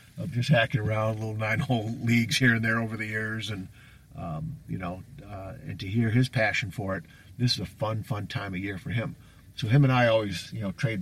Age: 50-69